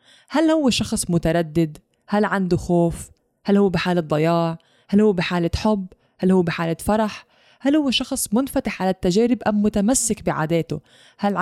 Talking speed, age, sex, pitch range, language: 150 wpm, 20-39, female, 175-235 Hz, English